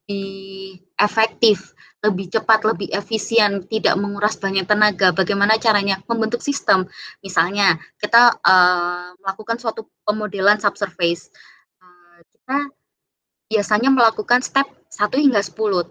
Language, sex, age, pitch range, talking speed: Indonesian, female, 20-39, 195-235 Hz, 110 wpm